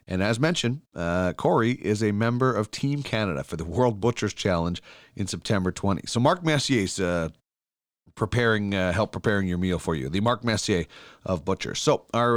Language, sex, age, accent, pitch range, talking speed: English, male, 40-59, American, 100-135 Hz, 190 wpm